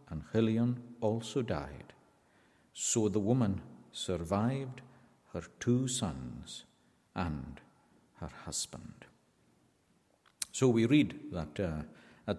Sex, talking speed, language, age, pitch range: male, 95 wpm, English, 60-79, 85-120 Hz